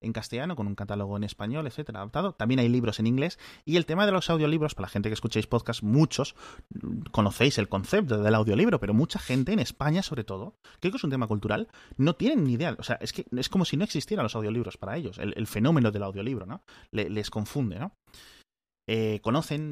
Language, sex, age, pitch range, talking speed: Spanish, male, 30-49, 105-140 Hz, 225 wpm